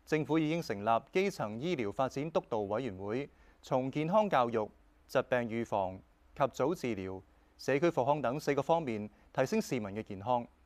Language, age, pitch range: Chinese, 30-49, 105-160 Hz